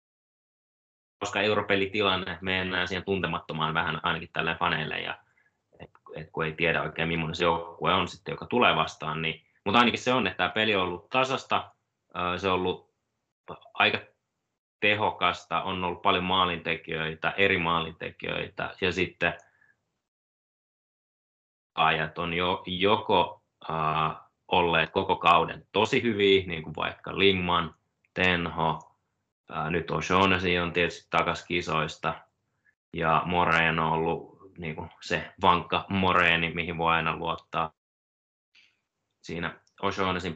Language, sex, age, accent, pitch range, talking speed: Finnish, male, 20-39, native, 80-95 Hz, 125 wpm